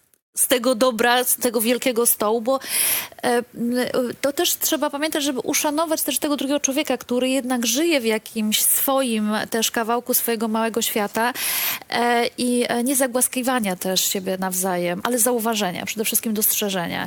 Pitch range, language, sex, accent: 210-270 Hz, Polish, female, native